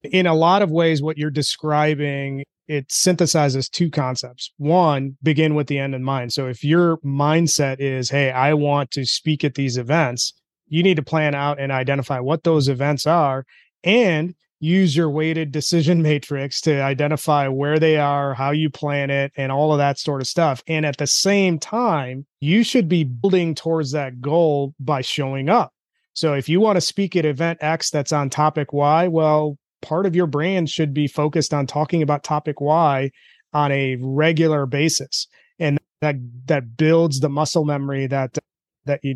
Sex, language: male, English